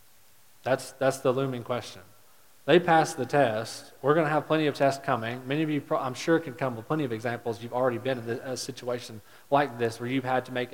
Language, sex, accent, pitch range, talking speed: English, male, American, 115-135 Hz, 230 wpm